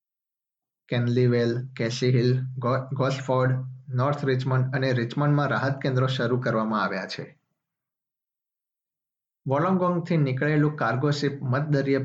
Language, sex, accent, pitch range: Gujarati, male, native, 125-145 Hz